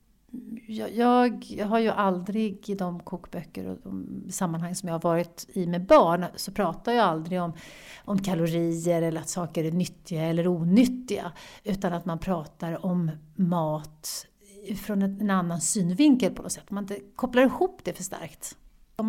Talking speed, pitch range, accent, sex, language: 165 wpm, 170-205 Hz, Swedish, female, English